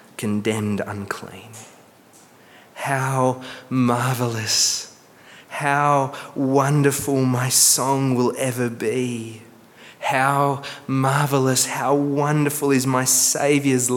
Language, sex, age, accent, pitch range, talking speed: English, male, 20-39, Australian, 110-130 Hz, 75 wpm